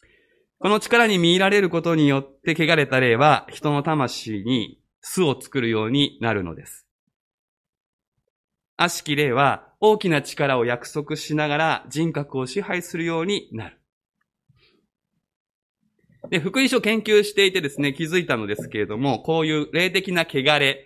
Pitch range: 125-205 Hz